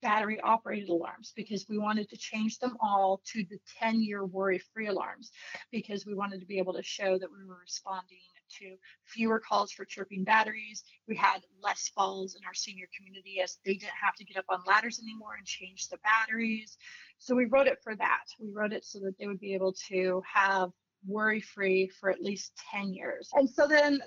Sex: female